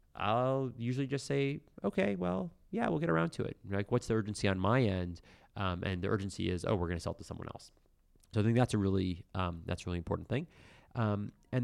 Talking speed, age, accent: 240 wpm, 30-49, American